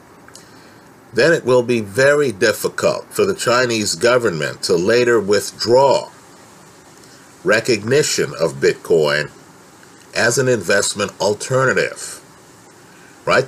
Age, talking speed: 50-69, 95 wpm